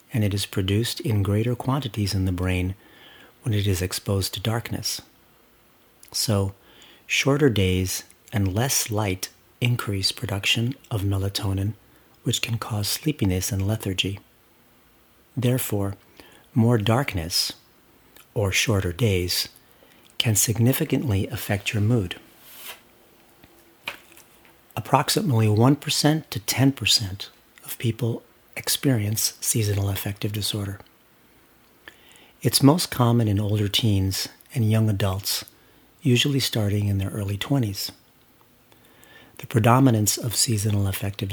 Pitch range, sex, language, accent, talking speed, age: 100-120 Hz, male, English, American, 105 wpm, 50-69